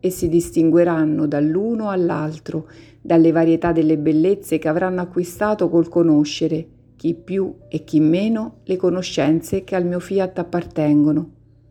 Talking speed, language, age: 135 wpm, Italian, 50-69